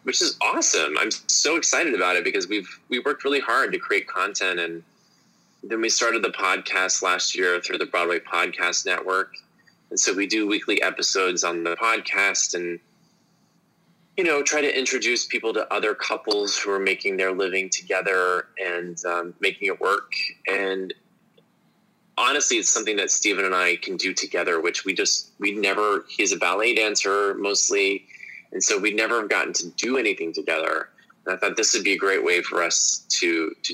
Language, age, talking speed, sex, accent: English, 20-39, 185 wpm, male, American